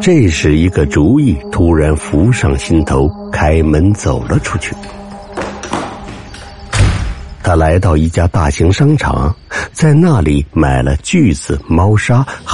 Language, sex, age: Chinese, male, 60-79